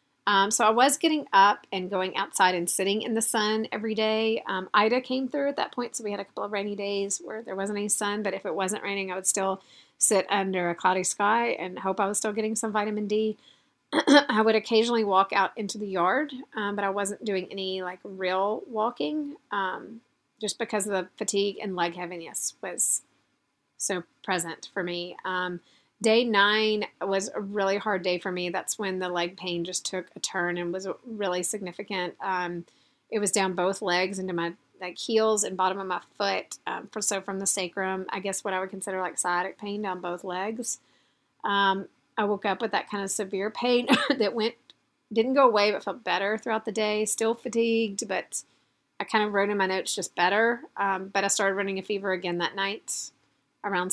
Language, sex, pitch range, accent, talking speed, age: English, female, 185-215 Hz, American, 210 wpm, 30-49